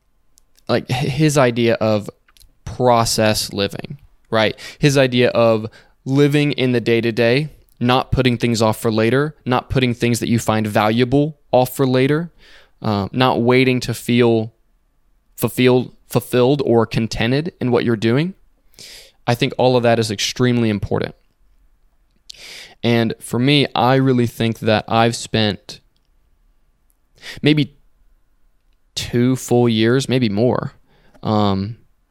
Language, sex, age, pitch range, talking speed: English, male, 20-39, 110-125 Hz, 125 wpm